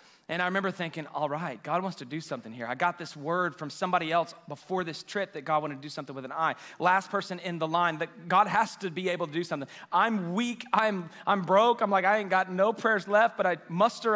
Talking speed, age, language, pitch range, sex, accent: 260 wpm, 30-49, English, 160-210 Hz, male, American